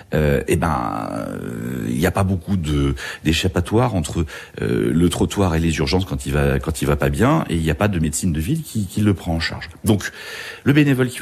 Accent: French